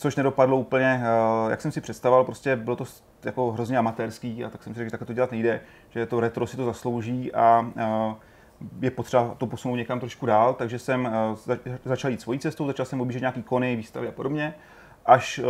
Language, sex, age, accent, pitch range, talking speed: Czech, male, 30-49, native, 115-130 Hz, 200 wpm